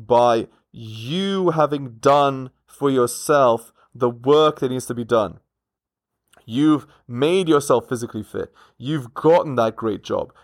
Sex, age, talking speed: male, 20-39, 130 wpm